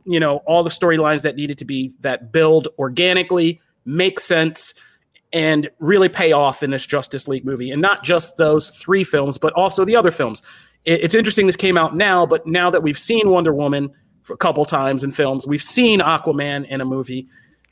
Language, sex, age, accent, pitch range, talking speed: English, male, 30-49, American, 135-175 Hz, 200 wpm